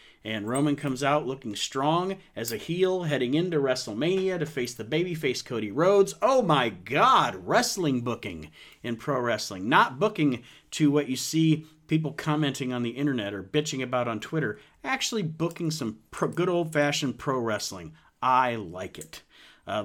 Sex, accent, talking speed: male, American, 160 wpm